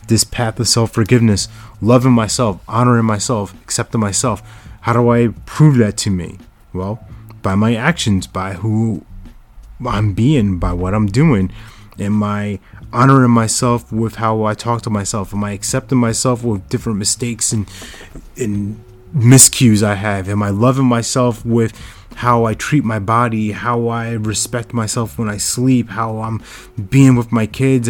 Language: English